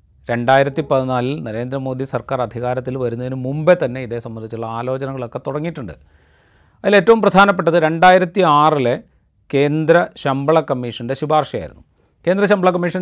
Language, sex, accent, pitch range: Malayalam, male, native, 115-150 Hz